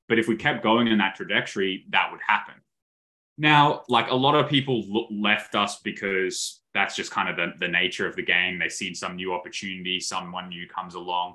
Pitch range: 90-125 Hz